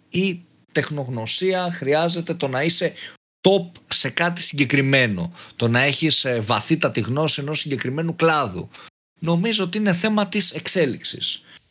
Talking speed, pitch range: 130 wpm, 120-180 Hz